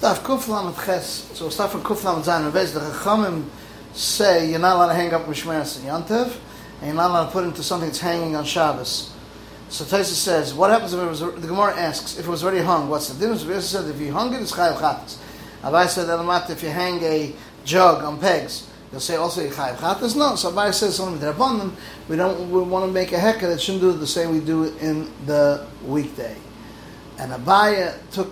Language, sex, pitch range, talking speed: English, male, 145-185 Hz, 215 wpm